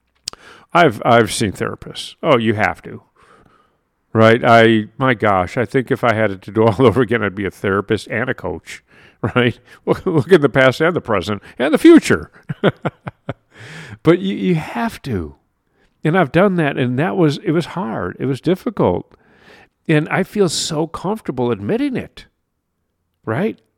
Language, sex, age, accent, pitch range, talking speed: English, male, 50-69, American, 115-165 Hz, 170 wpm